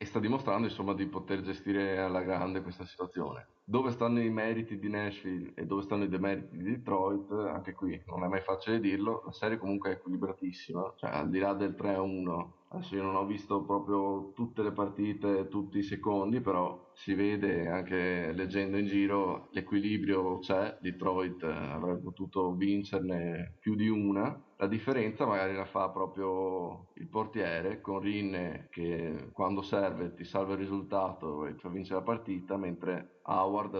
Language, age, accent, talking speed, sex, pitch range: Italian, 20-39, native, 170 wpm, male, 95-105 Hz